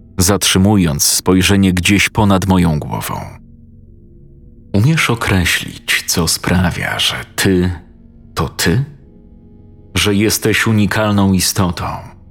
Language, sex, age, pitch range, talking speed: Polish, male, 40-59, 90-110 Hz, 90 wpm